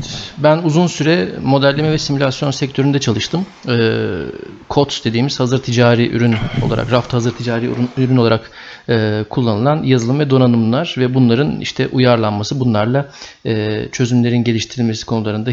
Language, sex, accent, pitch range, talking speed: Turkish, male, native, 115-145 Hz, 120 wpm